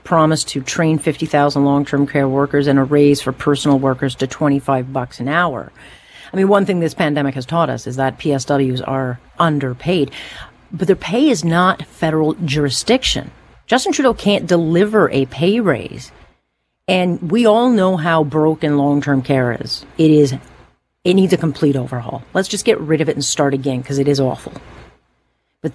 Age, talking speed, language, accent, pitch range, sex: 40-59, 175 wpm, English, American, 140-190 Hz, female